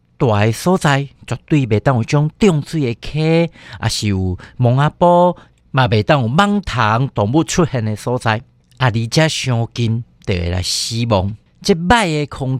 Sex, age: male, 50-69